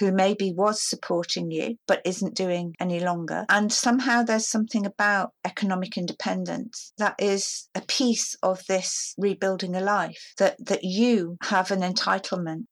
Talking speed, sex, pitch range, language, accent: 150 wpm, female, 175-205 Hz, English, British